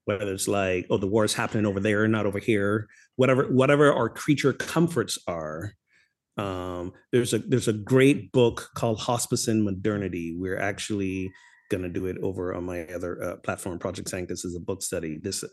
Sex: male